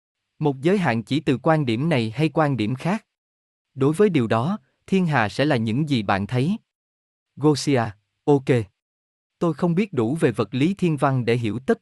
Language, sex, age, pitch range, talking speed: Vietnamese, male, 20-39, 110-155 Hz, 195 wpm